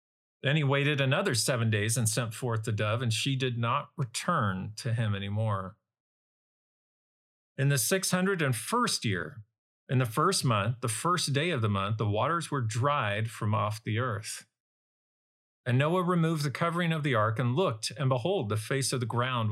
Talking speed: 180 wpm